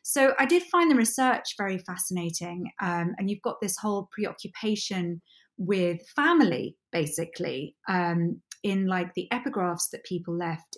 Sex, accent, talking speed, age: female, British, 145 wpm, 20-39